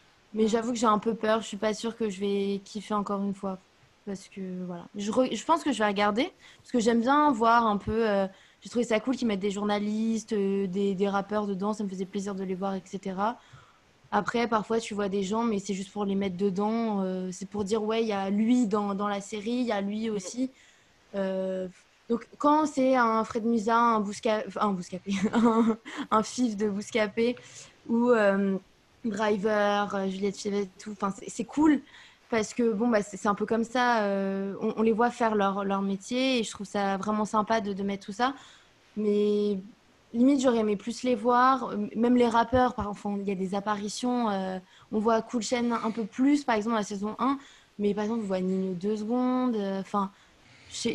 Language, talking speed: French, 220 wpm